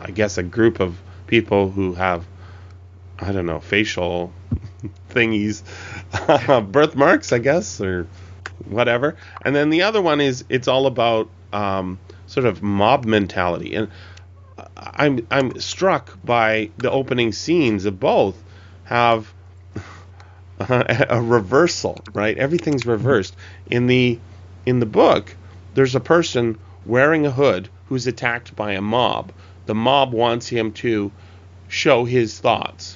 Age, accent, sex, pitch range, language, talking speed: 30-49, American, male, 95-125 Hz, English, 130 wpm